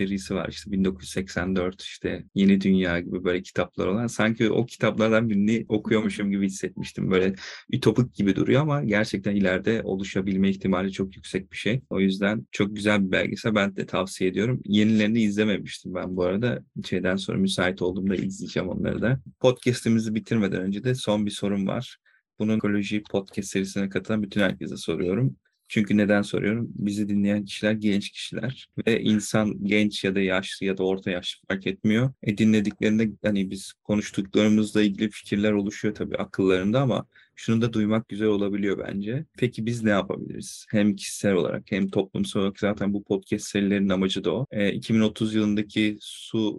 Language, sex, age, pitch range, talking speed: Turkish, male, 30-49, 95-110 Hz, 165 wpm